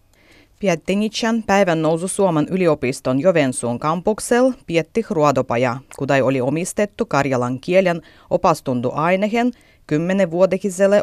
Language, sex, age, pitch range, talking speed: Finnish, female, 30-49, 135-200 Hz, 90 wpm